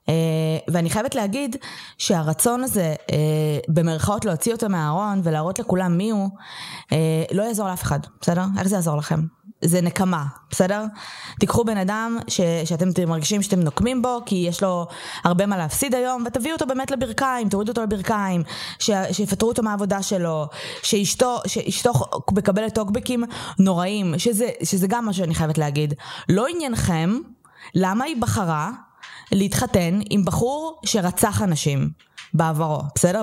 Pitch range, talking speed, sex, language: 170-225 Hz, 145 wpm, female, Hebrew